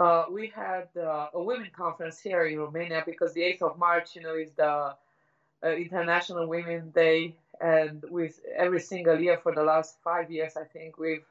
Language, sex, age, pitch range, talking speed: English, female, 20-39, 160-185 Hz, 190 wpm